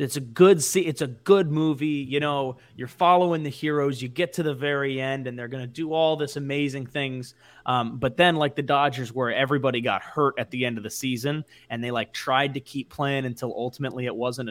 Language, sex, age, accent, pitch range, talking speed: English, male, 20-39, American, 120-150 Hz, 225 wpm